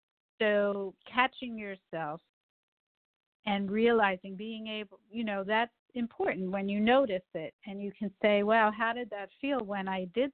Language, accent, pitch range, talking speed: English, American, 185-220 Hz, 155 wpm